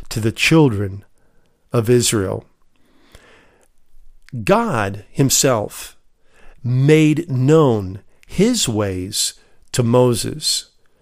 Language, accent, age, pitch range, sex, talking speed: English, American, 50-69, 115-175 Hz, male, 70 wpm